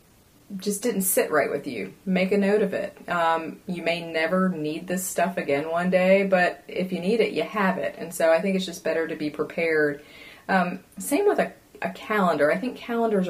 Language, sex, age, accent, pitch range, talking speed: English, female, 30-49, American, 160-195 Hz, 215 wpm